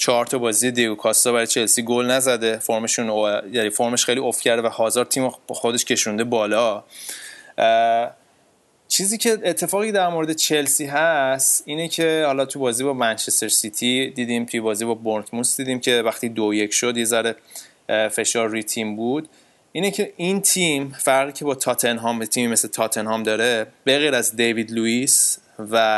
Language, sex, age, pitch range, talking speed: Persian, male, 20-39, 115-140 Hz, 165 wpm